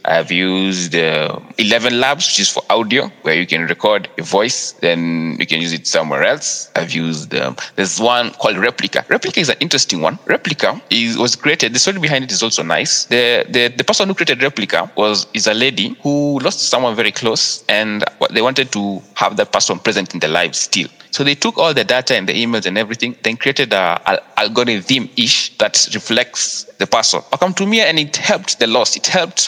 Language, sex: English, male